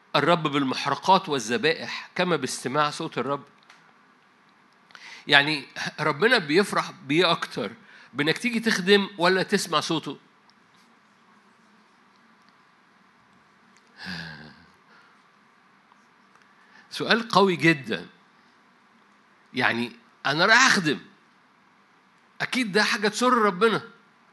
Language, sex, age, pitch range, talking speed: Arabic, male, 60-79, 160-225 Hz, 75 wpm